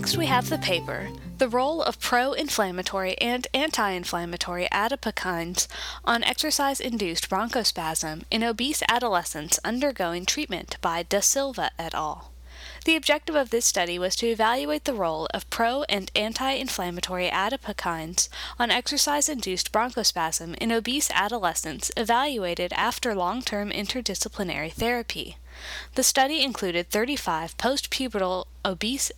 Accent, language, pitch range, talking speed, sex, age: American, English, 175-260 Hz, 115 wpm, female, 20-39